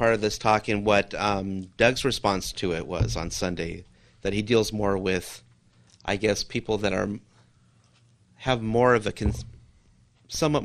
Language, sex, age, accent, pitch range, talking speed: English, male, 30-49, American, 95-115 Hz, 170 wpm